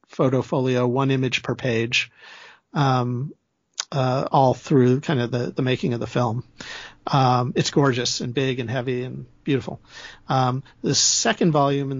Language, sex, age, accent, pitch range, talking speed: English, male, 50-69, American, 130-150 Hz, 160 wpm